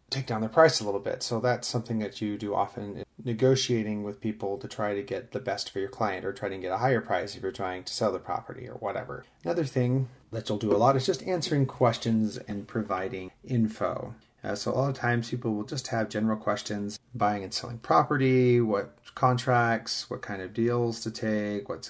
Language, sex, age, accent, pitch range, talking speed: English, male, 30-49, American, 100-125 Hz, 225 wpm